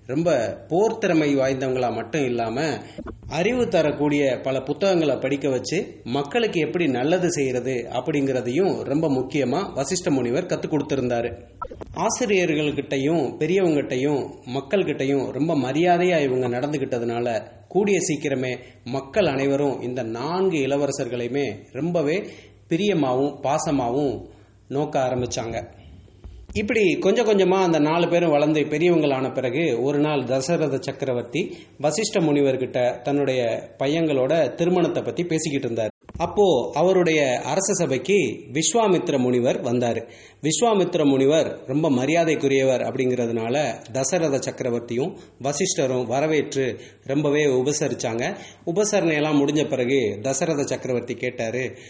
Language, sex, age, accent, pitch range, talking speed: English, male, 30-49, Indian, 125-155 Hz, 110 wpm